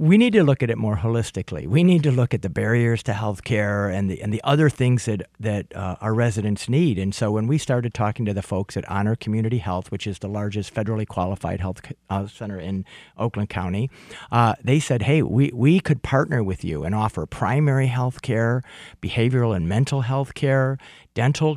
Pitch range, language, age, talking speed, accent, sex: 105-140 Hz, English, 50-69, 205 wpm, American, male